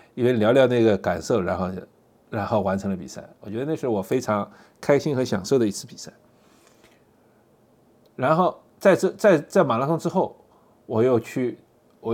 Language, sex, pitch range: Chinese, male, 105-150 Hz